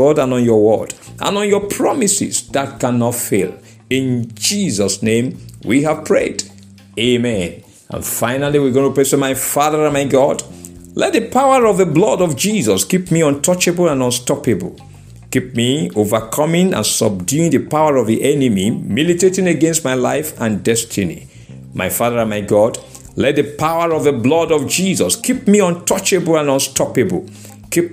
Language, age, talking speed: English, 50-69, 170 wpm